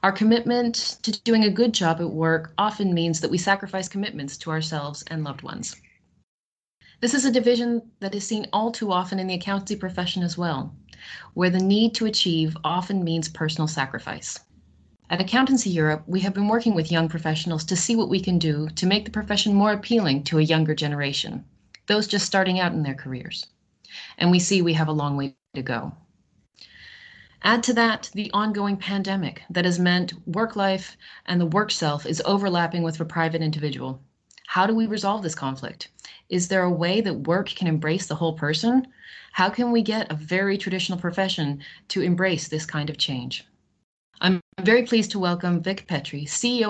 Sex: female